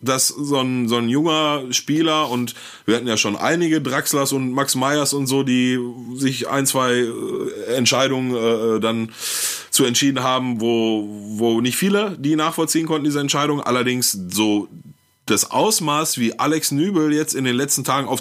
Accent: German